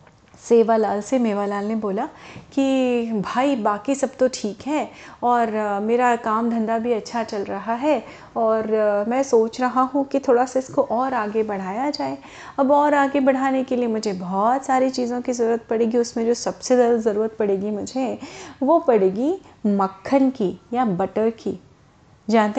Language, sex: Hindi, female